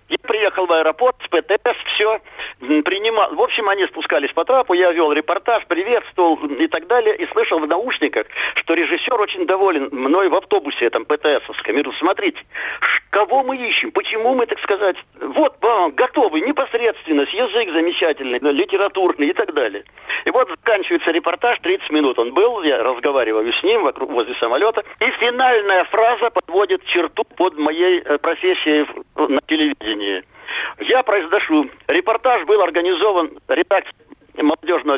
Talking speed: 140 wpm